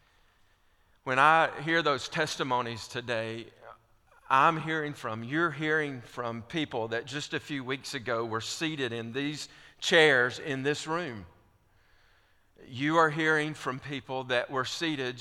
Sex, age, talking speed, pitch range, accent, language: male, 50-69, 140 wpm, 105-140 Hz, American, English